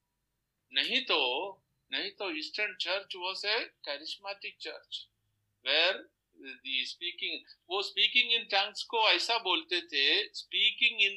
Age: 50-69